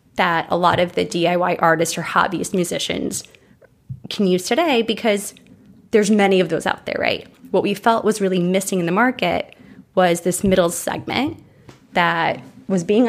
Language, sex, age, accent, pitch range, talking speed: English, female, 20-39, American, 180-215 Hz, 170 wpm